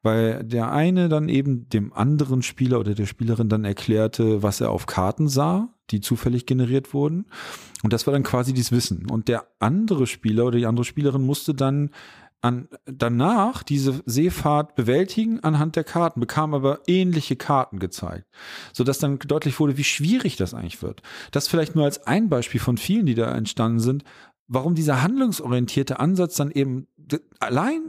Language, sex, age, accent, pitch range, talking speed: German, male, 40-59, German, 120-160 Hz, 170 wpm